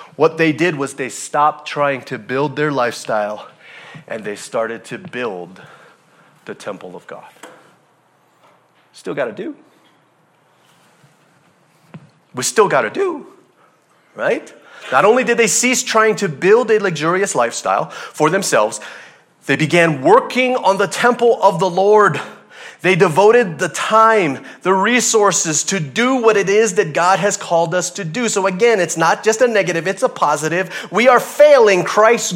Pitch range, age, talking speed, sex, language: 170-230 Hz, 30-49, 155 wpm, male, English